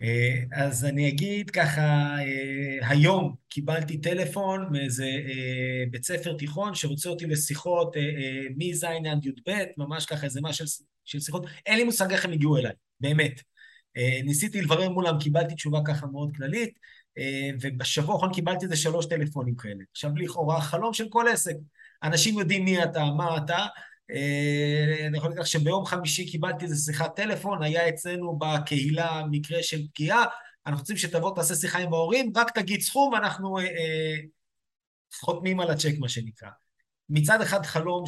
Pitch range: 145-175 Hz